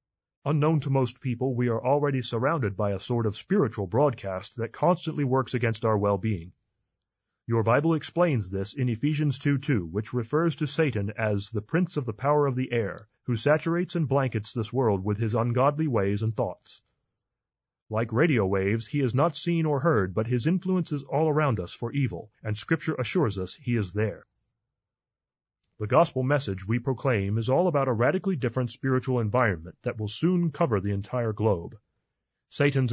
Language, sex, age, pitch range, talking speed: English, male, 30-49, 110-145 Hz, 180 wpm